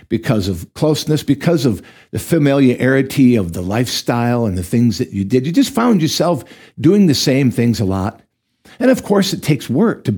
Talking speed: 195 wpm